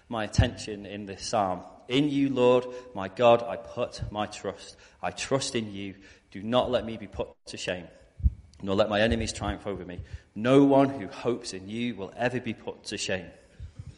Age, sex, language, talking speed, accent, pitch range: 30-49, male, English, 195 wpm, British, 100-125 Hz